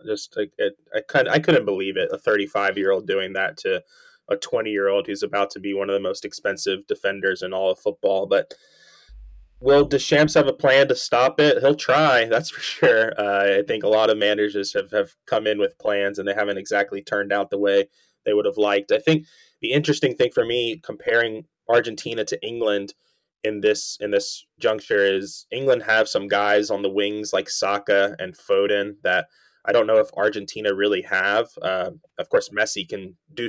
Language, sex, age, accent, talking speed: English, male, 20-39, American, 195 wpm